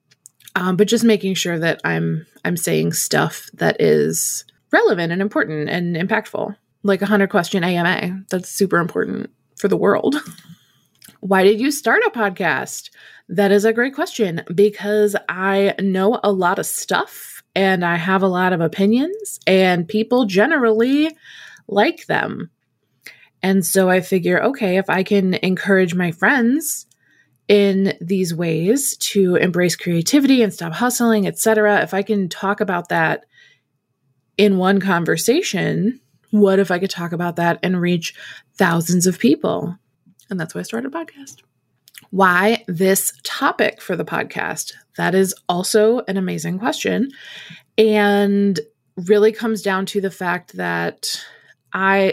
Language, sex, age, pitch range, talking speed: English, female, 20-39, 175-210 Hz, 145 wpm